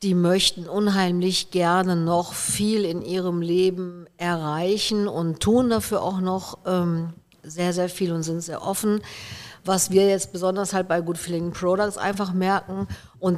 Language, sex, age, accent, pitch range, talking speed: German, female, 50-69, German, 165-190 Hz, 155 wpm